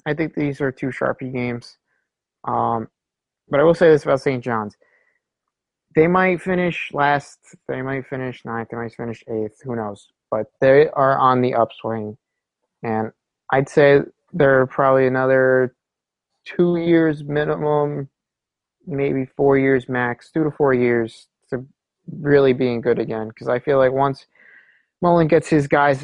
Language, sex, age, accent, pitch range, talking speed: English, male, 30-49, American, 115-140 Hz, 155 wpm